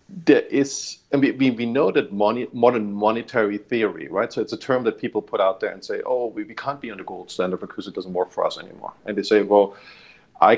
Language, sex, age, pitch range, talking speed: English, male, 40-59, 100-140 Hz, 250 wpm